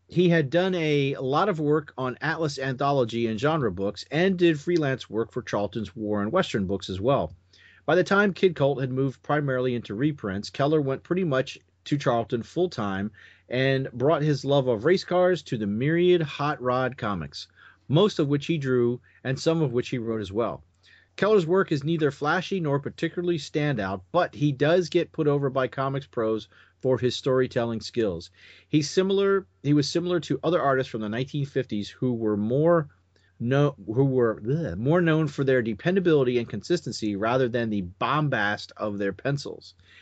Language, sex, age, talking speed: English, male, 40-59, 180 wpm